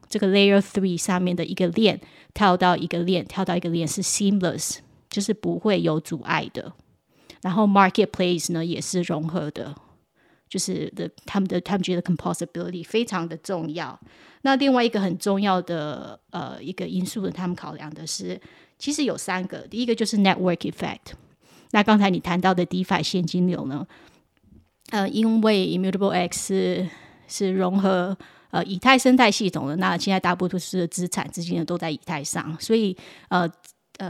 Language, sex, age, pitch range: Chinese, female, 20-39, 170-195 Hz